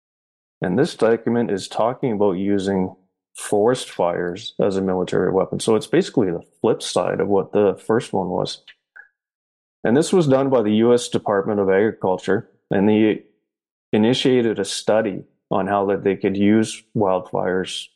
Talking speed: 155 wpm